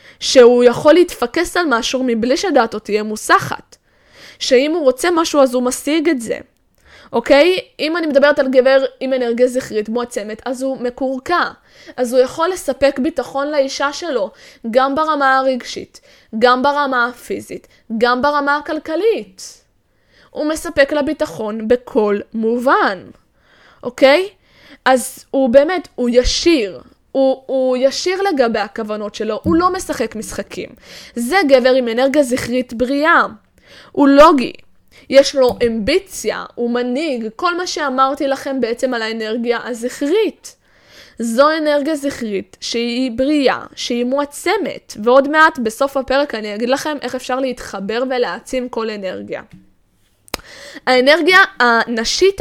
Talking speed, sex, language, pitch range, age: 130 wpm, female, Hebrew, 240-295 Hz, 10-29